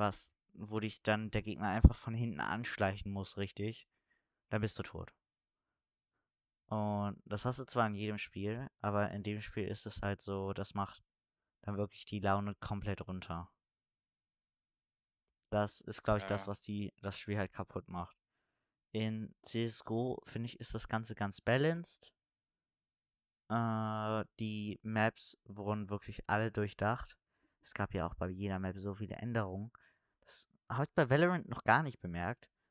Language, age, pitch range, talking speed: German, 20-39, 100-120 Hz, 160 wpm